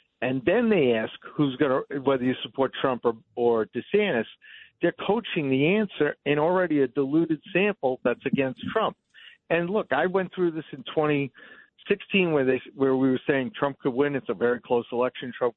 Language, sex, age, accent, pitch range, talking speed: English, male, 60-79, American, 120-155 Hz, 185 wpm